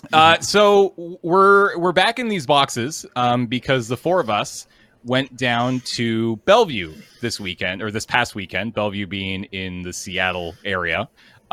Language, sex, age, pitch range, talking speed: English, male, 30-49, 95-125 Hz, 160 wpm